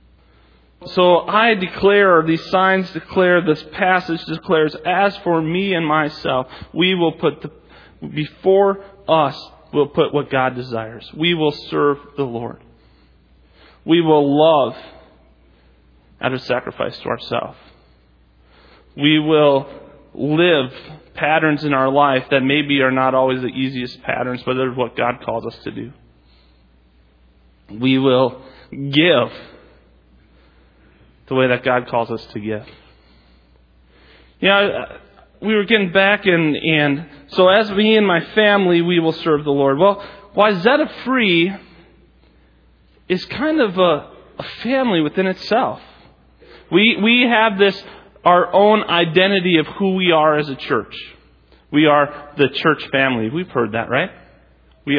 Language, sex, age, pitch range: English, male, 30-49, 115-185 Hz